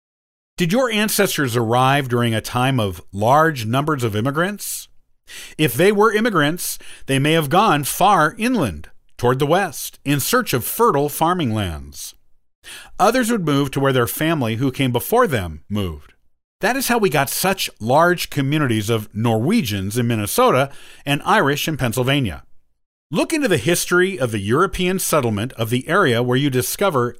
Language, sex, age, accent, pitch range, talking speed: English, male, 50-69, American, 115-175 Hz, 160 wpm